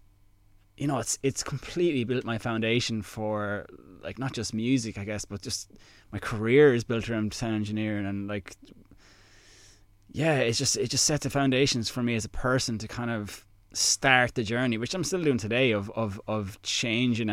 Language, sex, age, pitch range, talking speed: English, male, 20-39, 105-120 Hz, 185 wpm